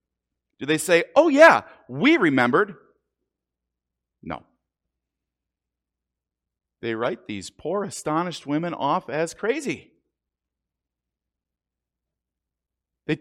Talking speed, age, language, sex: 80 wpm, 40-59, English, male